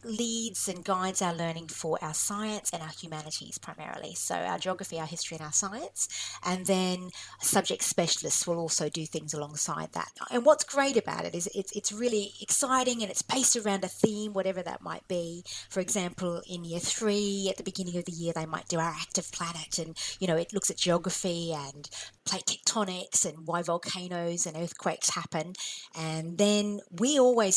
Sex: female